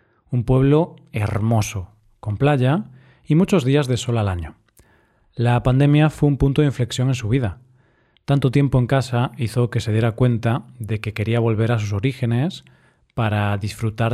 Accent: Spanish